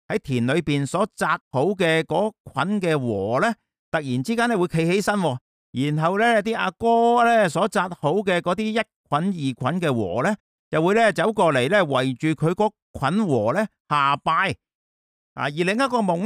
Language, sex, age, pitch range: Chinese, male, 50-69, 130-195 Hz